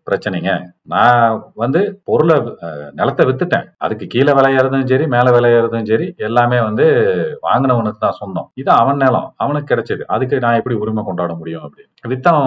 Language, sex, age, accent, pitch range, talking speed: Tamil, male, 40-59, native, 105-135 Hz, 150 wpm